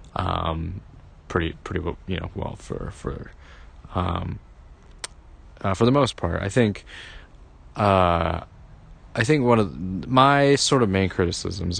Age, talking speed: 20-39, 130 wpm